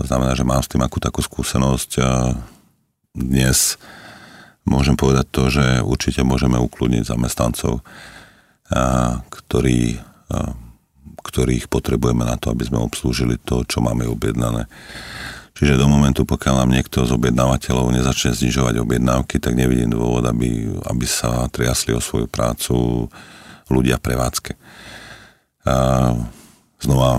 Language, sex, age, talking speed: Czech, male, 40-59, 130 wpm